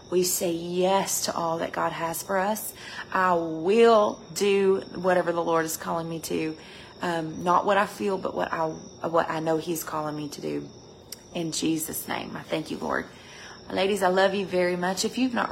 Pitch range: 170-200 Hz